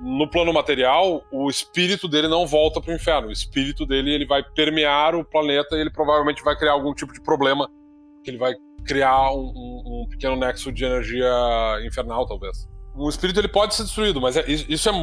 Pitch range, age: 125-155 Hz, 20-39